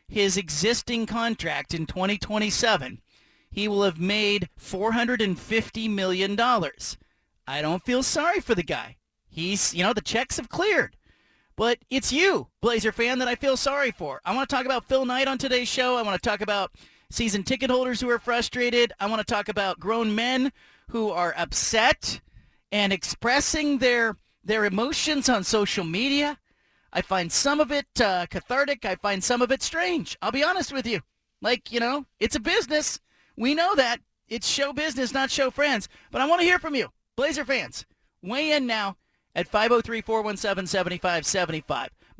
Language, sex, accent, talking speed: English, male, American, 170 wpm